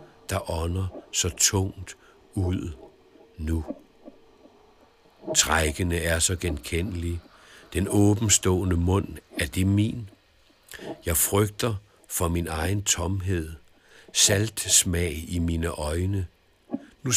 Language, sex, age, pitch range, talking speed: Danish, male, 60-79, 90-105 Hz, 95 wpm